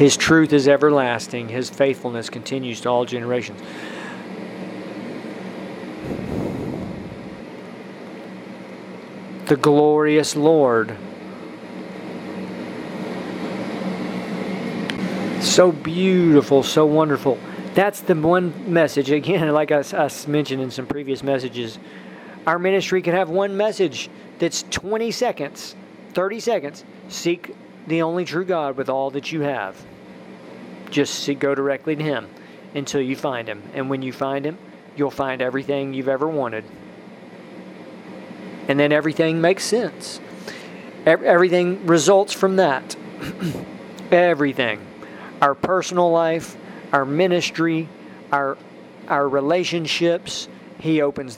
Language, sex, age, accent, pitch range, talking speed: English, male, 40-59, American, 135-175 Hz, 105 wpm